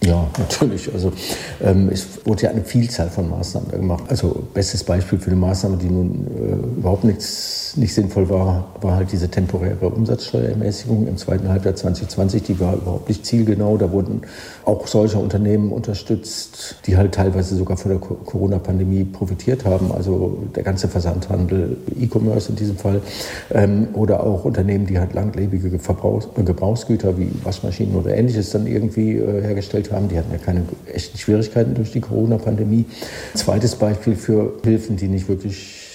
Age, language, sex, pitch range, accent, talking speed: 50-69, German, male, 95-110 Hz, German, 165 wpm